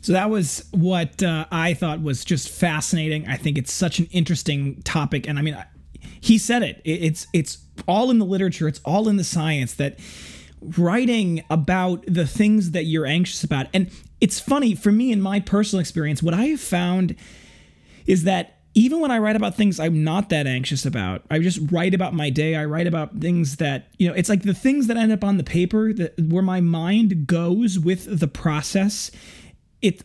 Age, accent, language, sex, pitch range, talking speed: 20-39, American, English, male, 150-195 Hz, 205 wpm